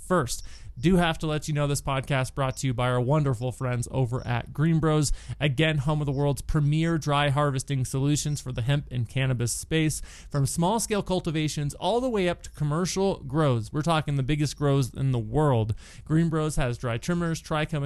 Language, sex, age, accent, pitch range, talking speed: English, male, 30-49, American, 125-150 Hz, 195 wpm